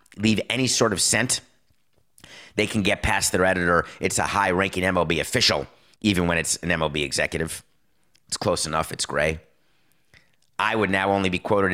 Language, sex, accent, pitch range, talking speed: English, male, American, 80-100 Hz, 170 wpm